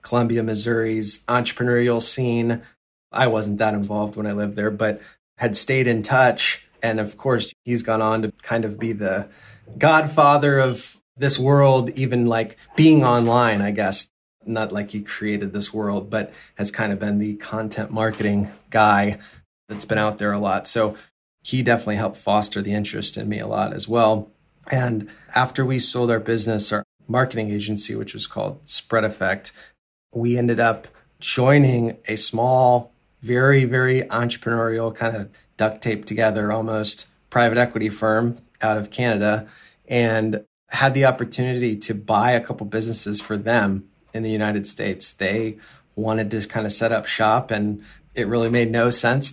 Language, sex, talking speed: English, male, 165 wpm